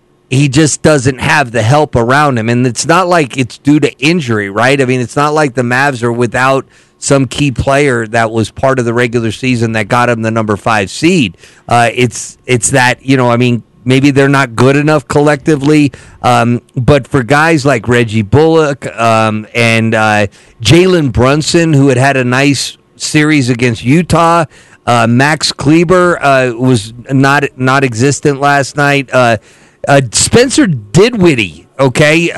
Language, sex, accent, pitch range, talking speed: English, male, American, 125-170 Hz, 170 wpm